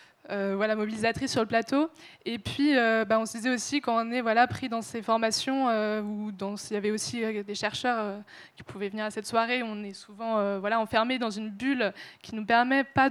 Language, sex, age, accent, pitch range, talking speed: French, female, 20-39, French, 210-245 Hz, 240 wpm